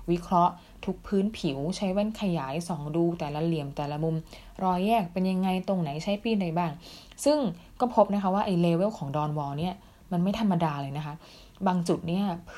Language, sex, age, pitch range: Thai, female, 20-39, 165-200 Hz